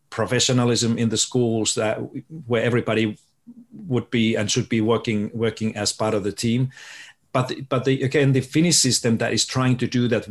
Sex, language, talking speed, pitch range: male, English, 185 wpm, 110-130 Hz